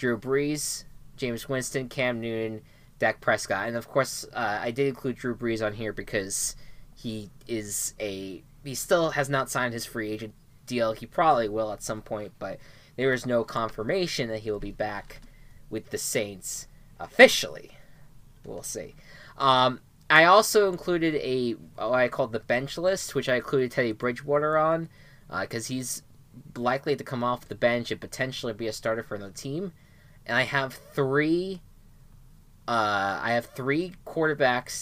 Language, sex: English, male